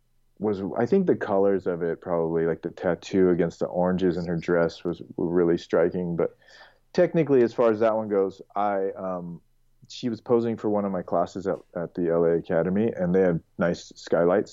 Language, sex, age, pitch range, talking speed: English, male, 30-49, 90-110 Hz, 200 wpm